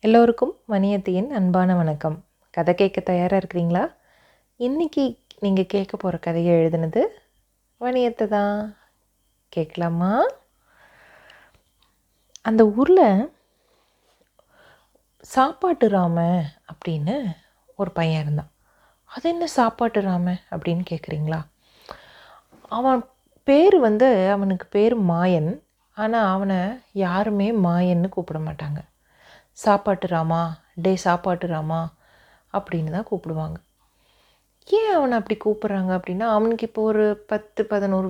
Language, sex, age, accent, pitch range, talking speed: Tamil, female, 30-49, native, 175-220 Hz, 90 wpm